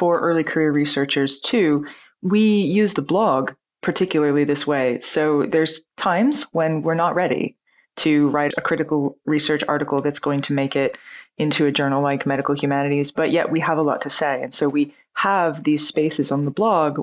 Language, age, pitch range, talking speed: English, 20-39, 145-170 Hz, 185 wpm